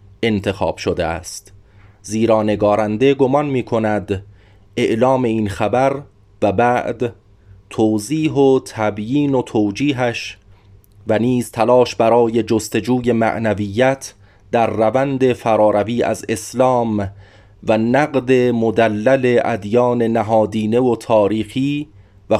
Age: 30-49